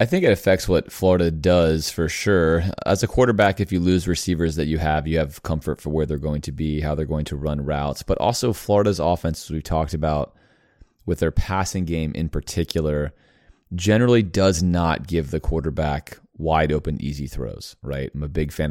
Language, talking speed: English, 200 wpm